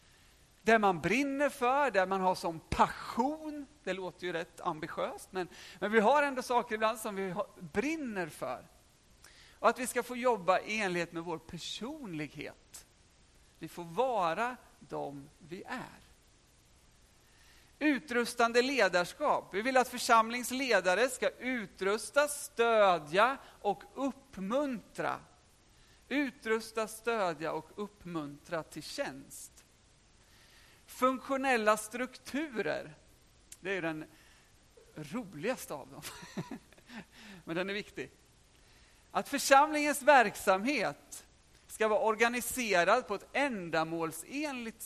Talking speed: 110 wpm